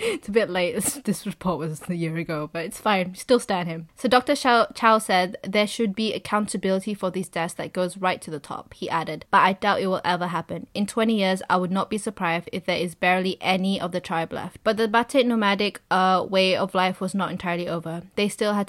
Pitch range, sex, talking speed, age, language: 175-205 Hz, female, 240 wpm, 20-39, English